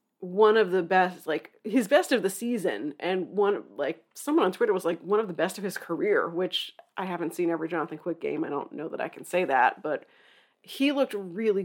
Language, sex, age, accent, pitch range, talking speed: English, female, 30-49, American, 180-255 Hz, 230 wpm